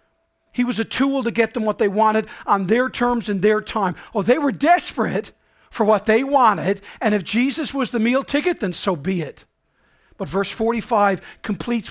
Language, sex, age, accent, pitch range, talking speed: English, male, 40-59, American, 170-225 Hz, 195 wpm